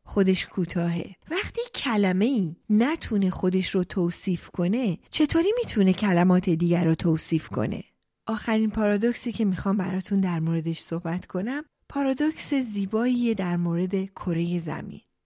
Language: Persian